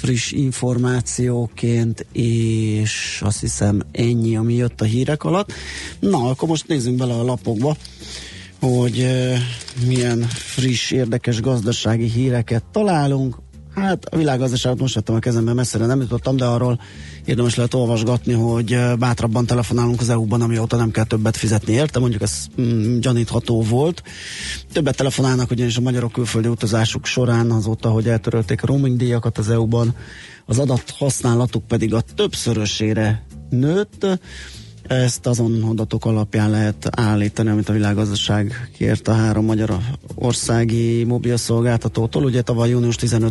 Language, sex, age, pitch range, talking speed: Hungarian, male, 30-49, 110-125 Hz, 130 wpm